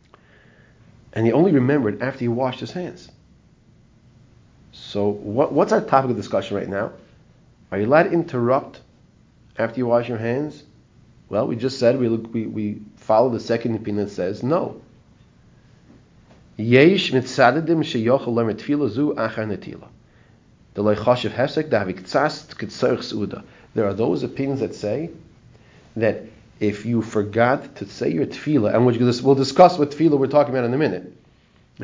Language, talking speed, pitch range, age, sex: English, 130 wpm, 110-135 Hz, 30-49, male